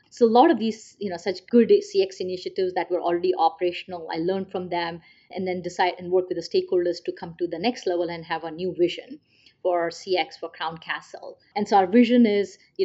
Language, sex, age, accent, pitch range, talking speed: English, female, 30-49, Indian, 175-210 Hz, 230 wpm